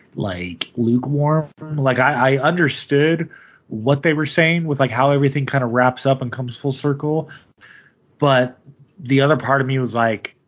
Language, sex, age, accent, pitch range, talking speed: English, male, 20-39, American, 105-135 Hz, 170 wpm